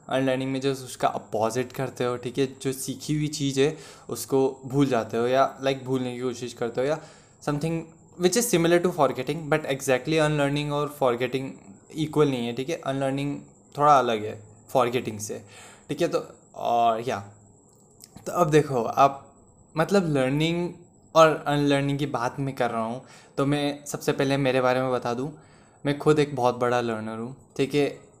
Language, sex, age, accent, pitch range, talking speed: Hindi, male, 20-39, native, 125-145 Hz, 185 wpm